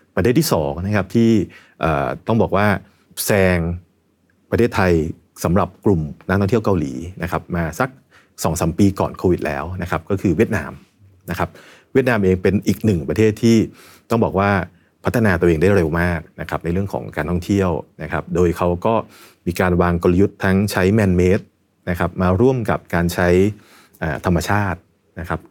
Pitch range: 85-105 Hz